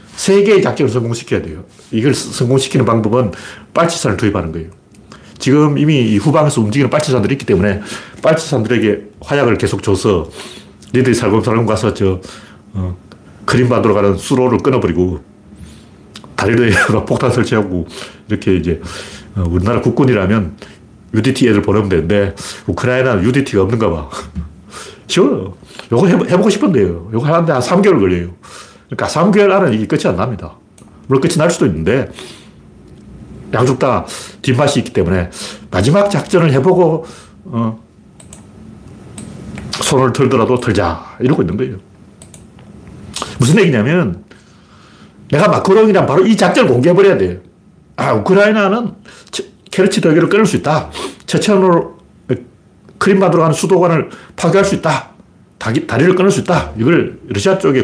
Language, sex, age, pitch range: Korean, male, 40-59, 105-165 Hz